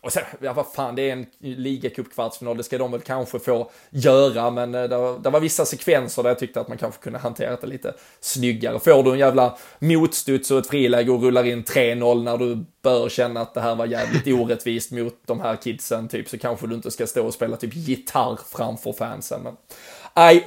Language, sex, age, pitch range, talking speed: Swedish, male, 20-39, 120-135 Hz, 220 wpm